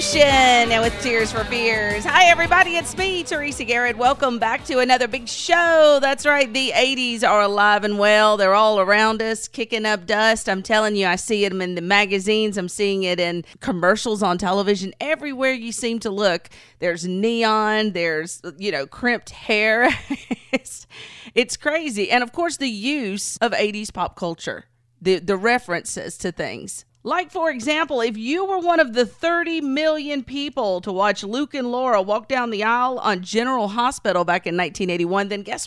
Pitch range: 195-270 Hz